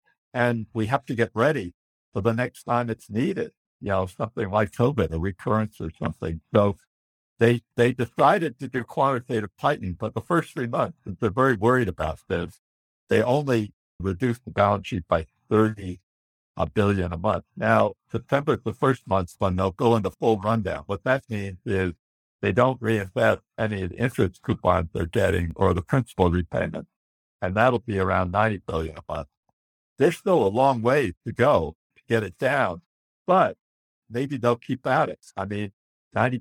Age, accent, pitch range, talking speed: 60-79, American, 95-120 Hz, 180 wpm